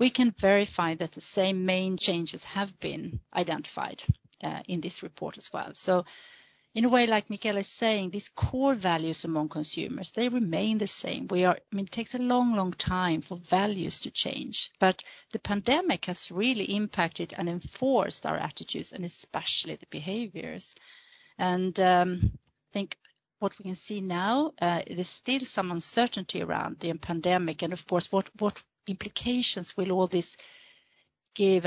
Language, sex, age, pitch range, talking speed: English, female, 40-59, 180-220 Hz, 170 wpm